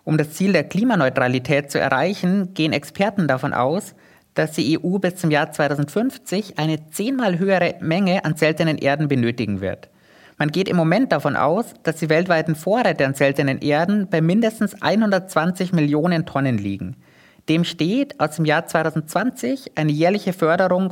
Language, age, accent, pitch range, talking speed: German, 20-39, German, 140-185 Hz, 160 wpm